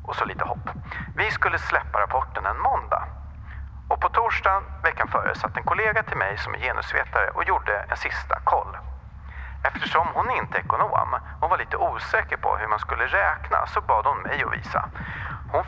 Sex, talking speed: male, 190 wpm